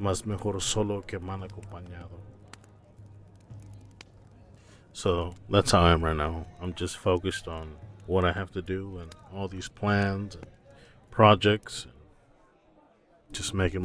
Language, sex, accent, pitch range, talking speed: English, male, American, 90-110 Hz, 120 wpm